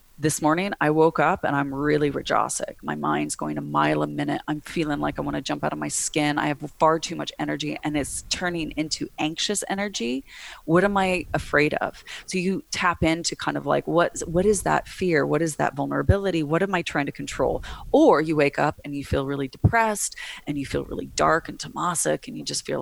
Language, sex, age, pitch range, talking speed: English, female, 30-49, 145-180 Hz, 225 wpm